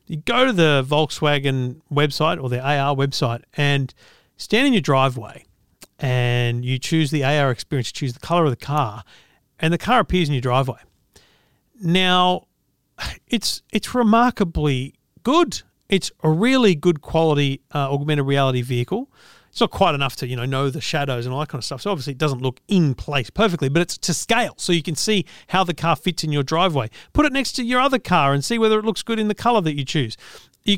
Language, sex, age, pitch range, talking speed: English, male, 40-59, 140-200 Hz, 210 wpm